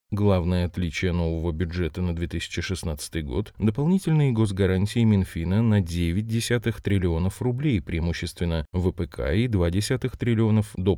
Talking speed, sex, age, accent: 120 wpm, male, 20-39, native